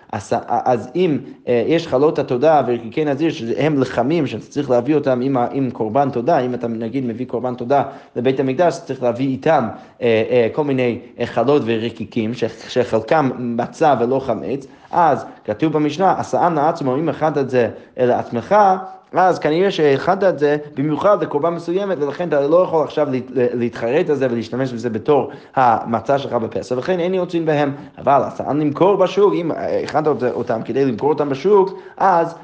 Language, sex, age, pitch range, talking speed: Hebrew, male, 20-39, 120-155 Hz, 165 wpm